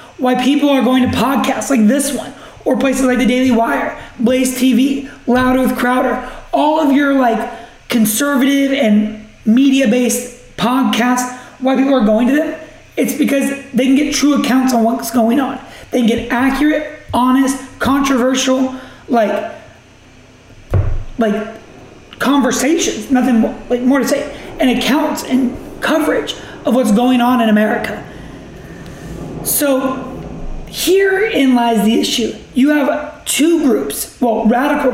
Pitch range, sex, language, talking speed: 235-275 Hz, male, English, 140 wpm